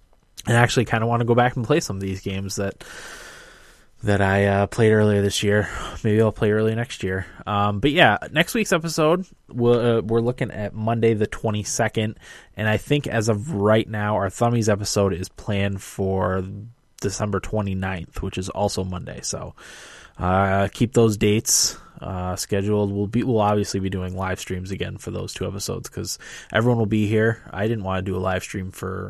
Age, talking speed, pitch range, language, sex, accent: 20-39, 200 wpm, 95-110 Hz, English, male, American